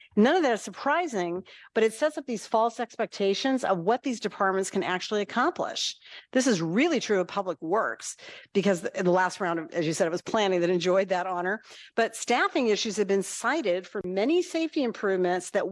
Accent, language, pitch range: American, English, 180-235 Hz